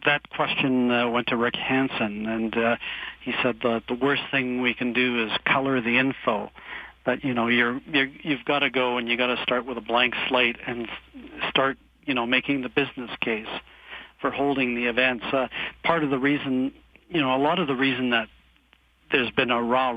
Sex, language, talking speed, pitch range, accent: male, English, 205 wpm, 120-135 Hz, American